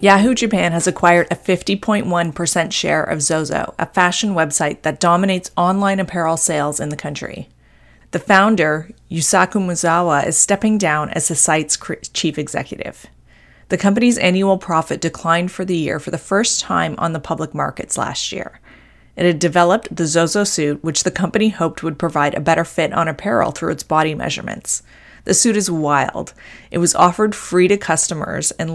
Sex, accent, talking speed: female, American, 170 wpm